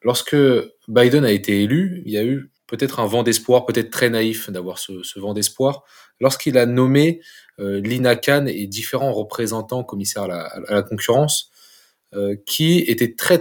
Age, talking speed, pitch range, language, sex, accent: 20-39, 180 wpm, 110-140 Hz, French, male, French